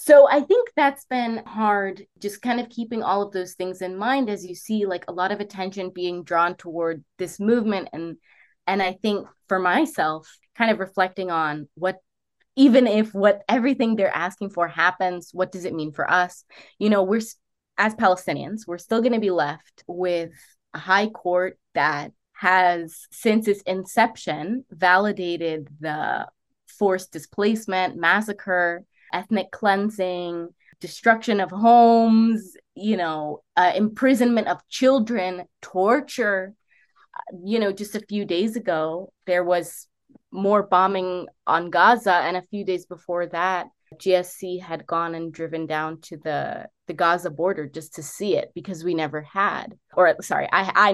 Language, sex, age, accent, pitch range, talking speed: English, female, 20-39, American, 175-220 Hz, 155 wpm